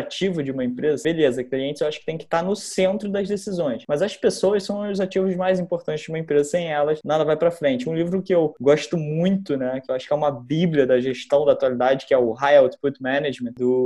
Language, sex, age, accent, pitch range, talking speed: Portuguese, male, 20-39, Brazilian, 145-185 Hz, 250 wpm